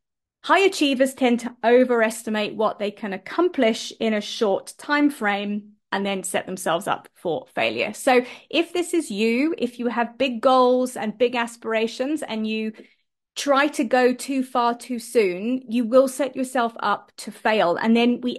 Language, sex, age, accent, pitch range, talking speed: English, female, 30-49, British, 220-270 Hz, 175 wpm